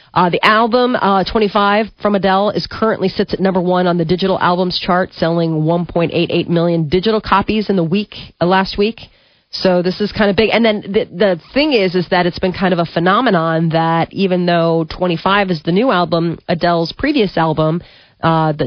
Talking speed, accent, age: 200 wpm, American, 30-49